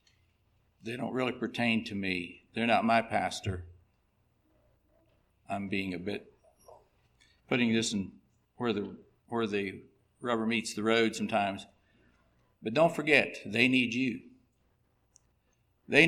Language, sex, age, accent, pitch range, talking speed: English, male, 60-79, American, 110-130 Hz, 125 wpm